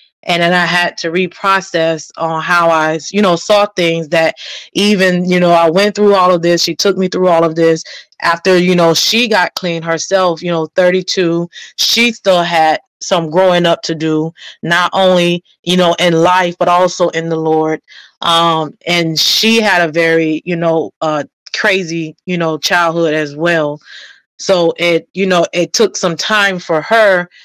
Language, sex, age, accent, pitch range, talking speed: English, female, 20-39, American, 165-185 Hz, 185 wpm